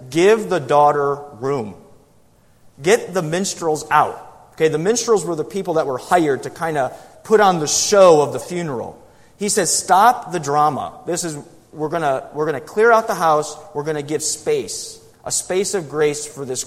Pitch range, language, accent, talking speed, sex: 140-185 Hz, English, American, 195 wpm, male